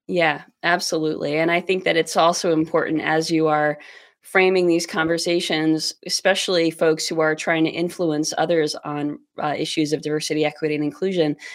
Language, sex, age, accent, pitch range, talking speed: English, female, 20-39, American, 155-185 Hz, 160 wpm